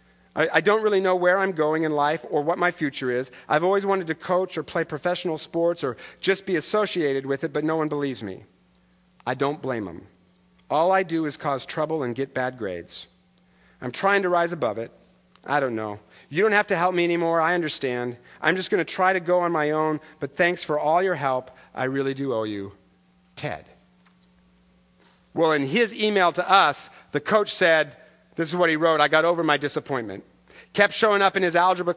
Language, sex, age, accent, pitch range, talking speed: English, male, 50-69, American, 135-180 Hz, 210 wpm